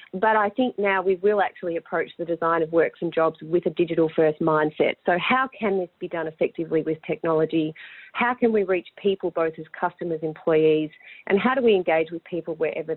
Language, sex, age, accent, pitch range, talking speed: English, female, 30-49, Australian, 165-210 Hz, 205 wpm